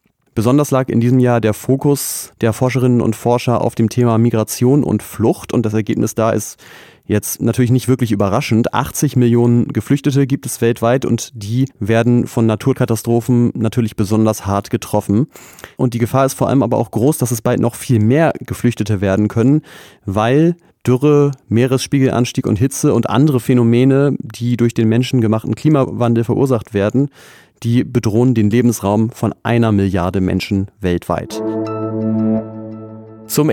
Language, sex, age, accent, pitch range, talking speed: German, male, 30-49, German, 110-130 Hz, 150 wpm